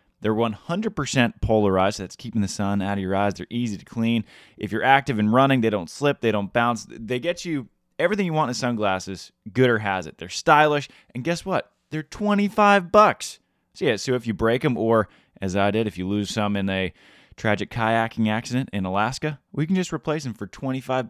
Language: English